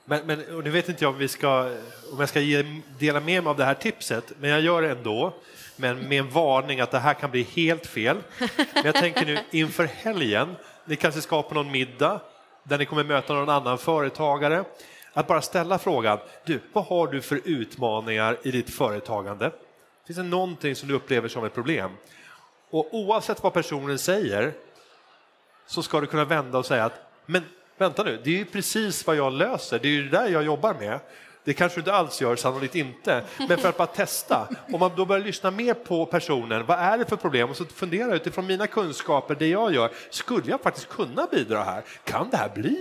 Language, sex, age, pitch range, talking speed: Swedish, male, 30-49, 140-180 Hz, 210 wpm